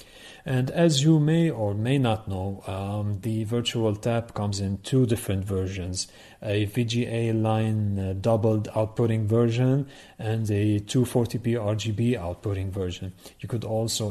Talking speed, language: 140 wpm, English